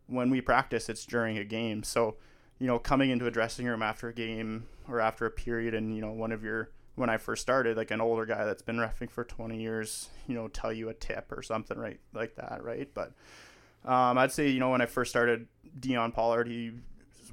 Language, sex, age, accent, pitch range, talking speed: English, male, 20-39, American, 115-125 Hz, 230 wpm